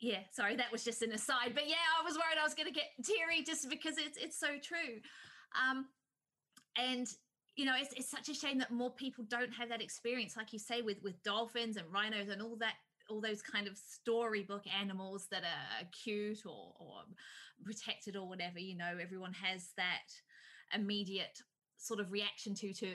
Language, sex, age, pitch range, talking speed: English, female, 20-39, 195-245 Hz, 195 wpm